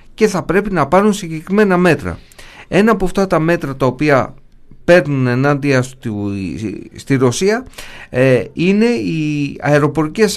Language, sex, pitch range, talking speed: Greek, male, 120-165 Hz, 120 wpm